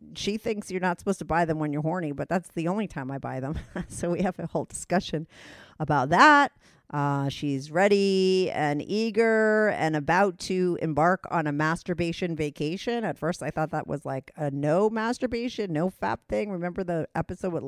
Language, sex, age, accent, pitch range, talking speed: English, female, 40-59, American, 155-205 Hz, 195 wpm